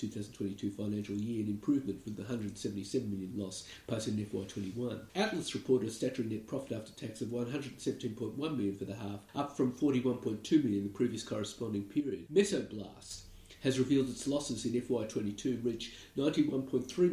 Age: 50-69